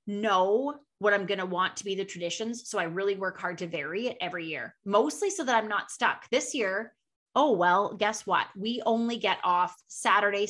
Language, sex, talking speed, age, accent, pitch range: English, female, 210 wpm, 20-39, American, 195-240 Hz